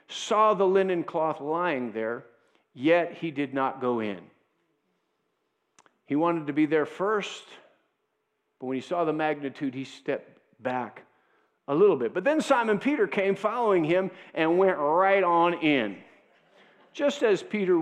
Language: English